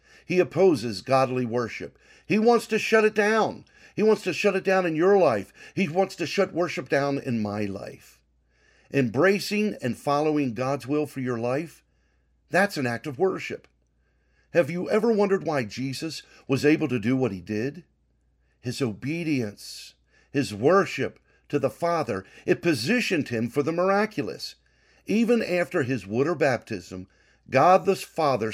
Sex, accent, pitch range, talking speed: male, American, 100-170 Hz, 160 wpm